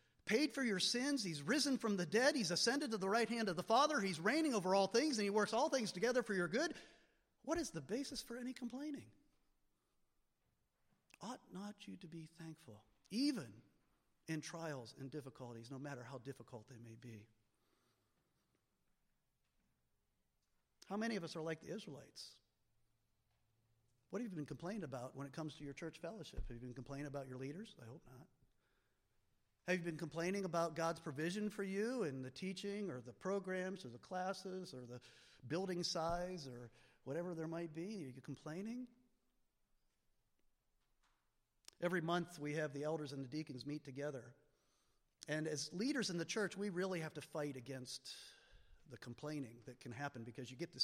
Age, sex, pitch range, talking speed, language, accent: 40-59, male, 130-200 Hz, 175 wpm, English, American